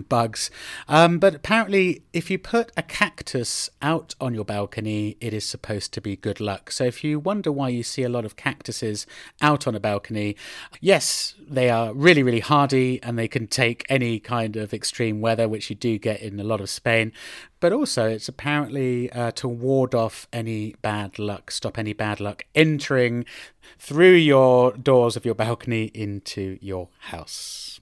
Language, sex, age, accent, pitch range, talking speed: English, male, 30-49, British, 110-145 Hz, 180 wpm